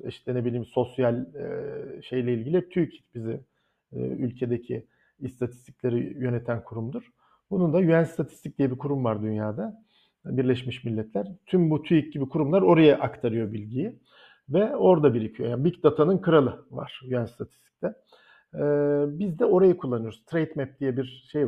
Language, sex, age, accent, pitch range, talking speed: Turkish, male, 50-69, native, 125-185 Hz, 140 wpm